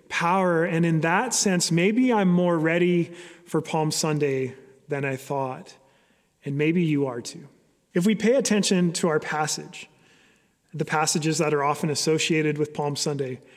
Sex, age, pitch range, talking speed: male, 30-49, 150-185 Hz, 160 wpm